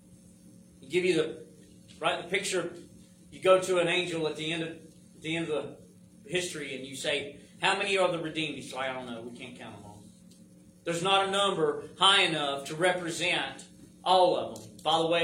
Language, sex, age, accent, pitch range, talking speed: English, male, 40-59, American, 160-230 Hz, 200 wpm